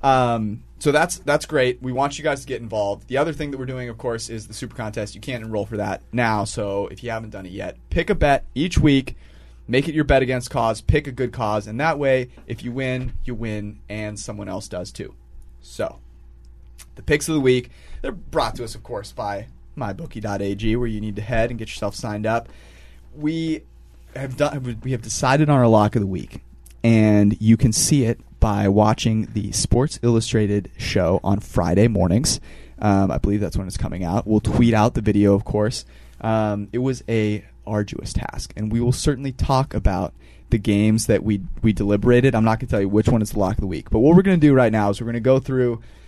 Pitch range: 100-125 Hz